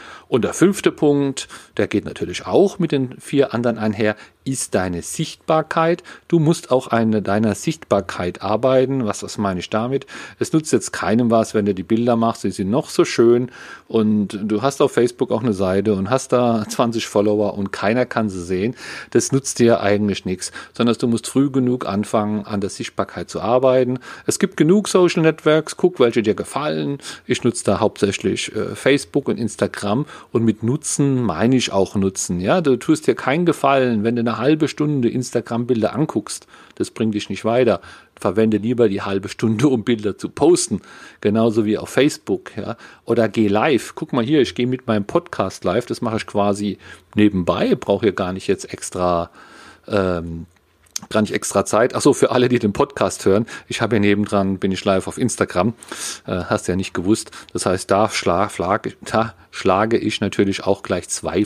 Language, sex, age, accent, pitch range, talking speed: German, male, 40-59, German, 100-130 Hz, 185 wpm